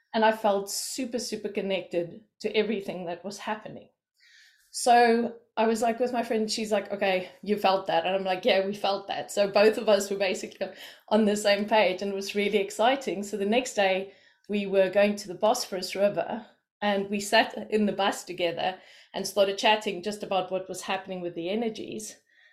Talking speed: 200 wpm